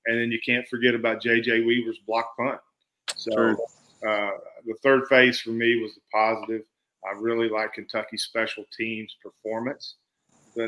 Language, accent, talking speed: English, American, 155 wpm